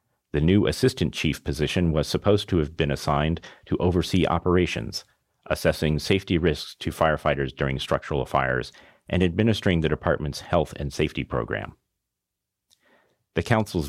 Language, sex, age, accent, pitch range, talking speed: English, male, 40-59, American, 75-90 Hz, 140 wpm